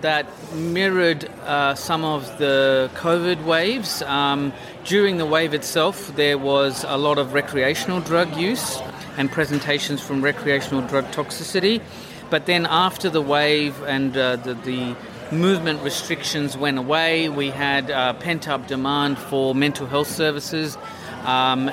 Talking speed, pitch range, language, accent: 140 wpm, 135-155 Hz, English, Australian